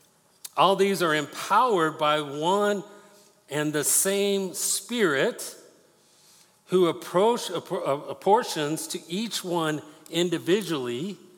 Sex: male